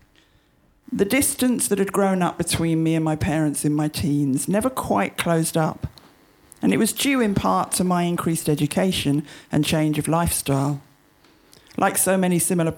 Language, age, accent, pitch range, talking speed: English, 50-69, British, 150-180 Hz, 170 wpm